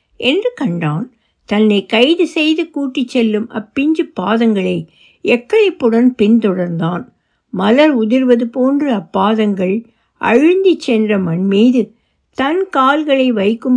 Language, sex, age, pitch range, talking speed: Tamil, female, 60-79, 200-275 Hz, 90 wpm